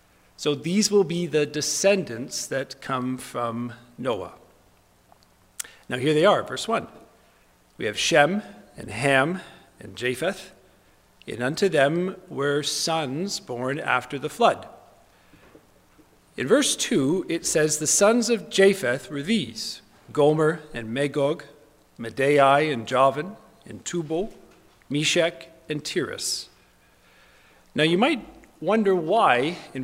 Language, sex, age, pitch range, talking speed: English, male, 50-69, 130-170 Hz, 120 wpm